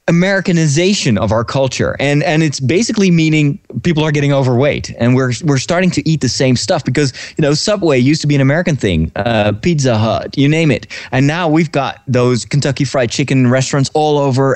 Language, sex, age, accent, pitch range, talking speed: English, male, 20-39, American, 115-155 Hz, 200 wpm